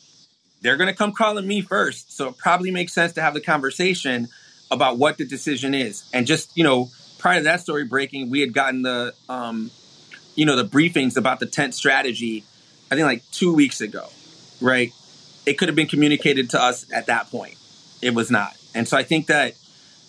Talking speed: 205 wpm